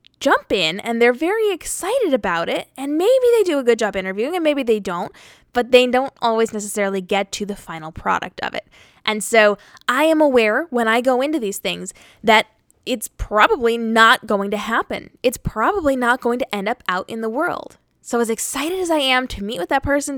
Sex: female